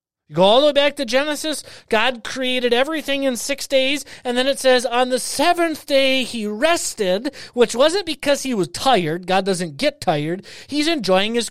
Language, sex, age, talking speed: English, male, 30-49, 190 wpm